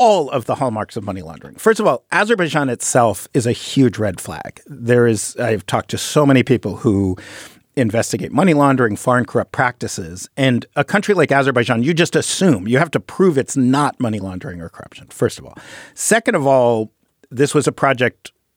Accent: American